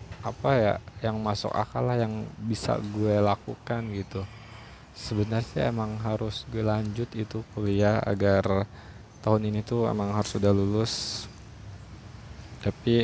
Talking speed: 125 wpm